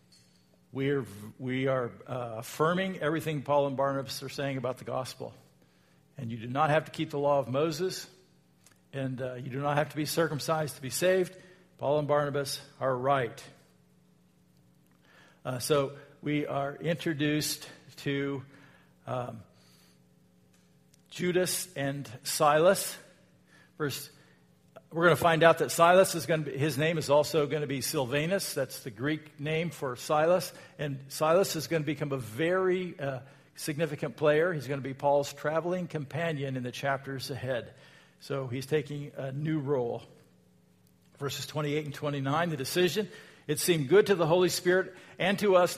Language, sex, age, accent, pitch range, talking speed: English, male, 50-69, American, 135-165 Hz, 160 wpm